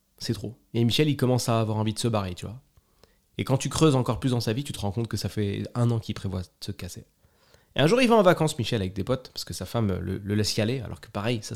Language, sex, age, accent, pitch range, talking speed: French, male, 20-39, French, 100-130 Hz, 315 wpm